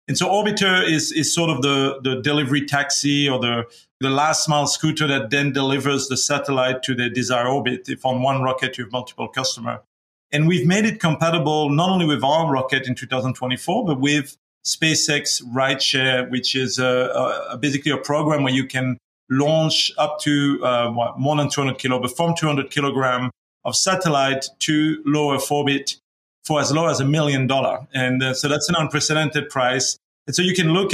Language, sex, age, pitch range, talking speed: English, male, 40-59, 130-155 Hz, 190 wpm